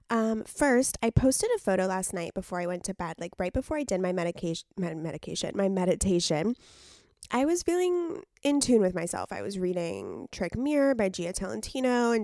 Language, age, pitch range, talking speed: English, 20-39, 175-225 Hz, 195 wpm